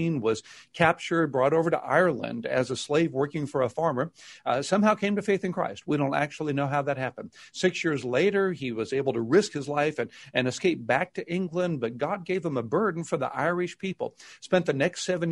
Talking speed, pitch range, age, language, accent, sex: 225 wpm, 135-180 Hz, 60-79, English, American, male